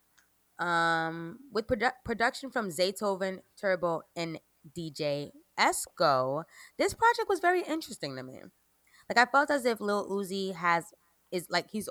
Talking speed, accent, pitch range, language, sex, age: 140 wpm, American, 150-220 Hz, English, female, 20-39